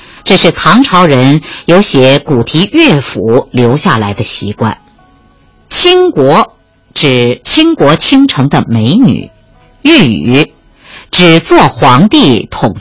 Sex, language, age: female, Chinese, 50-69